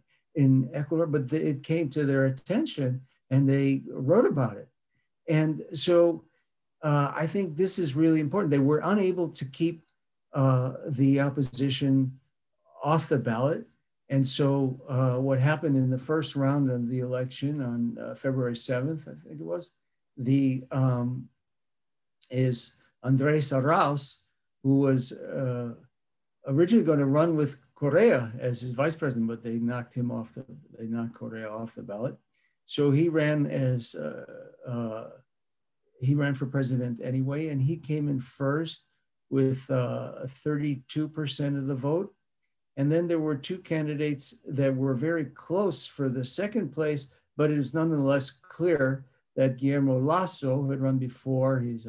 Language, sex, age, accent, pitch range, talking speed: English, male, 60-79, American, 130-150 Hz, 150 wpm